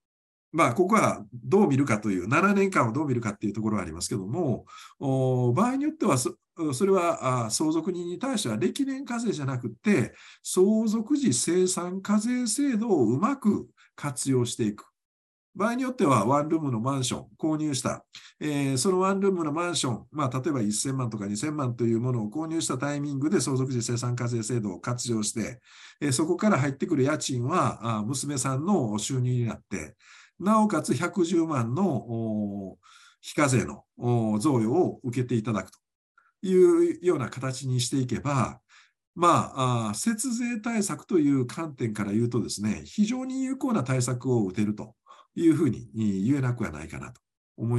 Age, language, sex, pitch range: 50-69, Japanese, male, 120-195 Hz